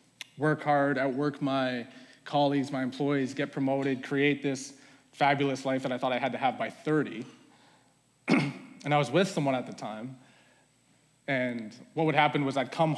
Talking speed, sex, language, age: 175 wpm, male, English, 20-39